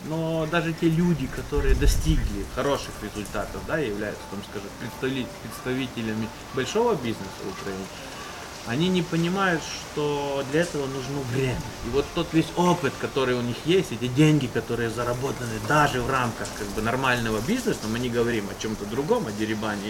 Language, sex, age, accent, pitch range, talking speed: Russian, male, 30-49, native, 115-150 Hz, 160 wpm